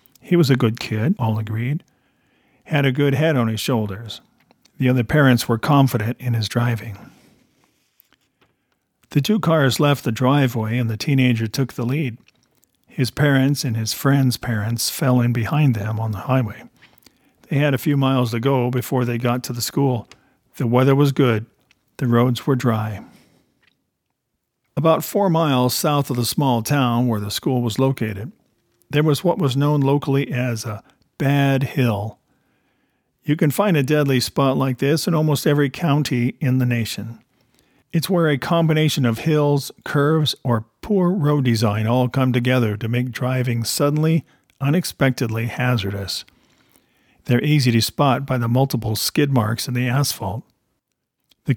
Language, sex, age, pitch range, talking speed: English, male, 50-69, 120-145 Hz, 160 wpm